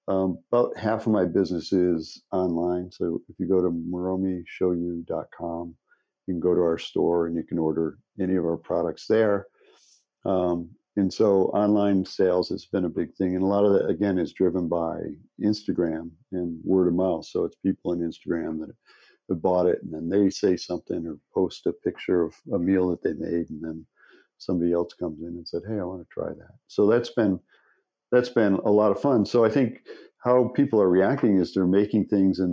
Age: 50-69